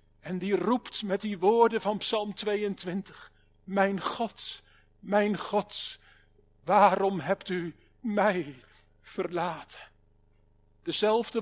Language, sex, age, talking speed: Dutch, male, 50-69, 100 wpm